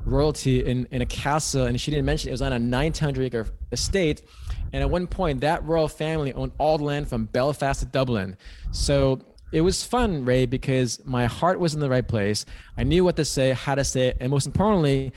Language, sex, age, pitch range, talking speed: English, male, 20-39, 125-155 Hz, 220 wpm